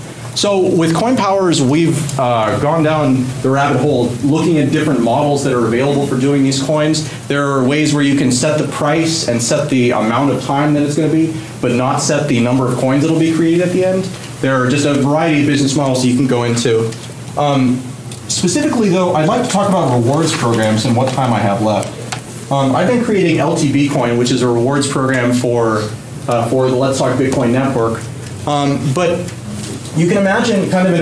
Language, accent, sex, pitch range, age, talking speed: English, American, male, 125-160 Hz, 30-49, 210 wpm